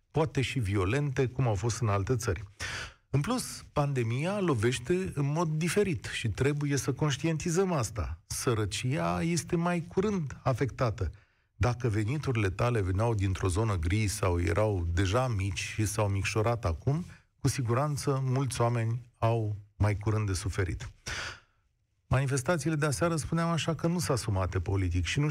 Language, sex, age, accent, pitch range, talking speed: Romanian, male, 40-59, native, 100-150 Hz, 145 wpm